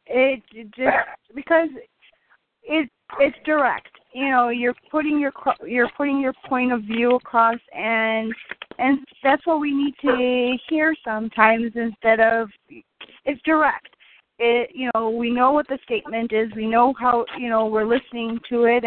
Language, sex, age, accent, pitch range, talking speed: English, female, 30-49, American, 245-305 Hz, 155 wpm